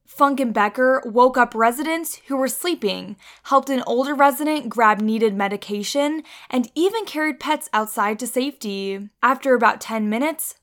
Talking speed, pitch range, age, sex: 150 wpm, 210-285 Hz, 10-29, female